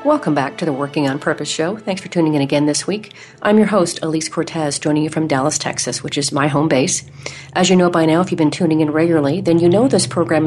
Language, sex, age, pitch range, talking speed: English, female, 40-59, 155-180 Hz, 265 wpm